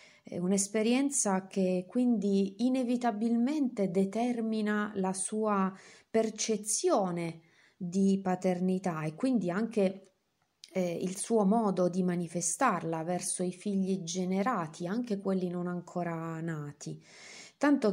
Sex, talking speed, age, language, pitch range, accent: female, 95 wpm, 30-49, Italian, 175-220 Hz, native